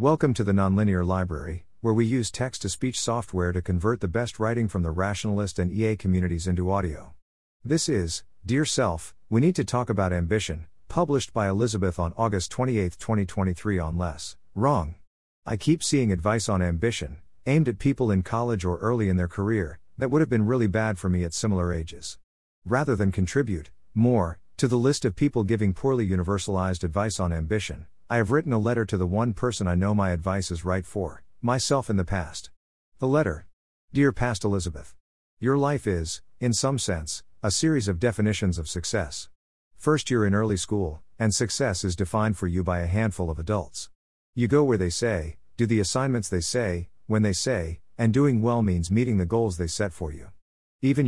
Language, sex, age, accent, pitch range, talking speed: English, male, 50-69, American, 90-115 Hz, 190 wpm